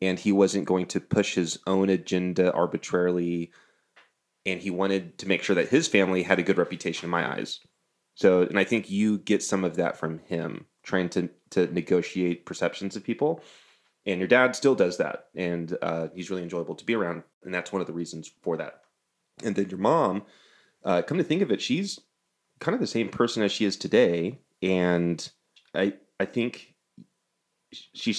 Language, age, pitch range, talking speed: English, 30-49, 90-100 Hz, 195 wpm